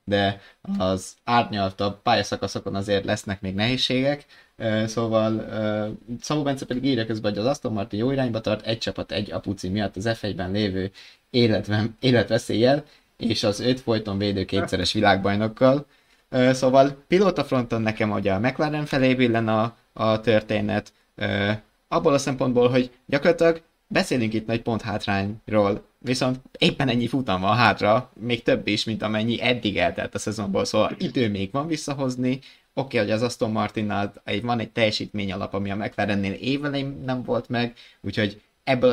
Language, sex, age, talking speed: Hungarian, male, 20-39, 145 wpm